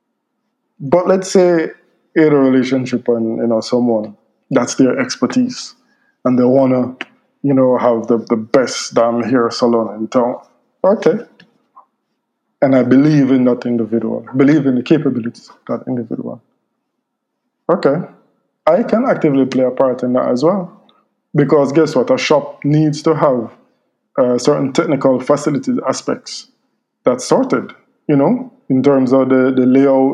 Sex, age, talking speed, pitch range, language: male, 20-39, 150 wpm, 130-160 Hz, English